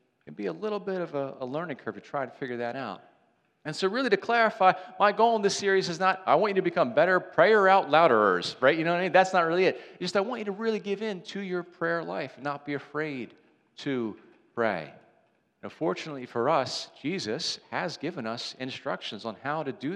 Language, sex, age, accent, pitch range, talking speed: English, male, 40-59, American, 130-175 Hz, 240 wpm